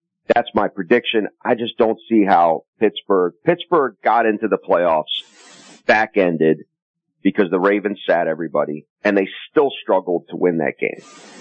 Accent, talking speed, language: American, 145 wpm, English